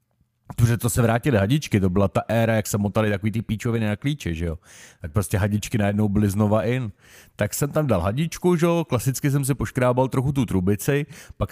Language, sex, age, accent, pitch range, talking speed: Czech, male, 40-59, native, 95-120 Hz, 215 wpm